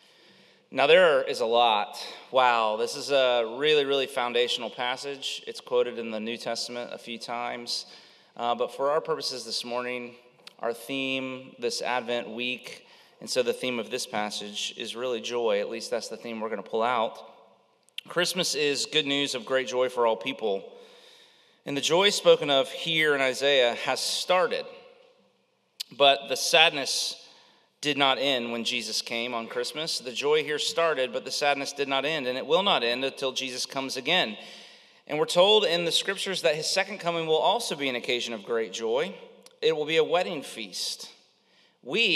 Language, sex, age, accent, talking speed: English, male, 30-49, American, 185 wpm